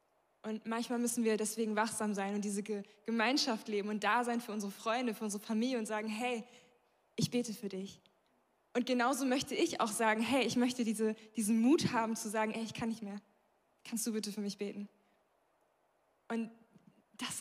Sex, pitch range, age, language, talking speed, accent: female, 210-240 Hz, 20-39, German, 195 wpm, German